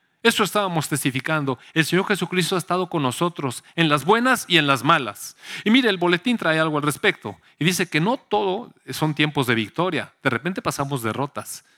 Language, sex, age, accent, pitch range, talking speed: Spanish, male, 40-59, Mexican, 135-195 Hz, 195 wpm